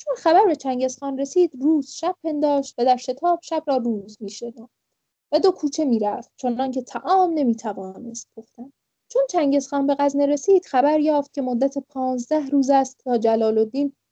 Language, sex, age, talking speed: English, female, 10-29, 175 wpm